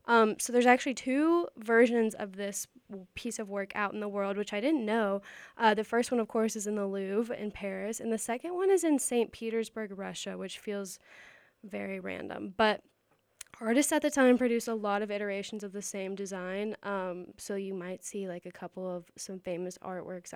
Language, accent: English, American